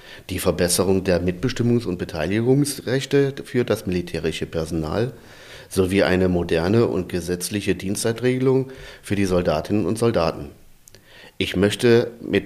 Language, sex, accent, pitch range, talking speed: German, male, German, 90-110 Hz, 115 wpm